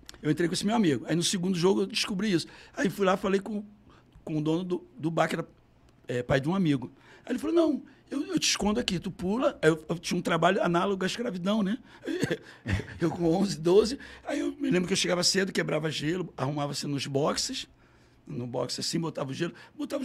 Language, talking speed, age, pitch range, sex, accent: Portuguese, 225 wpm, 60-79, 165-225 Hz, male, Brazilian